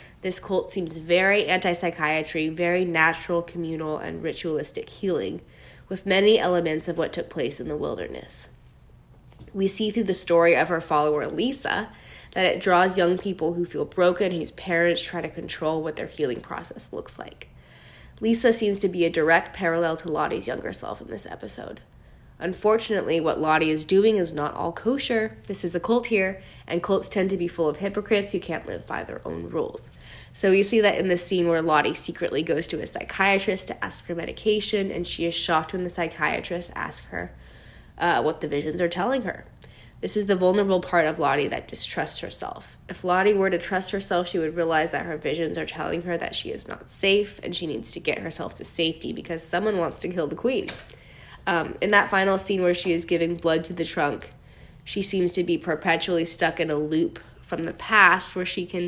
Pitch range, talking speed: 160-195 Hz, 205 wpm